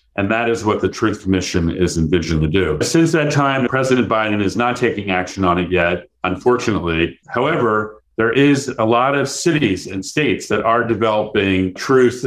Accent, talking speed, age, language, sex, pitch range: American, 180 wpm, 50-69, English, male, 95-120 Hz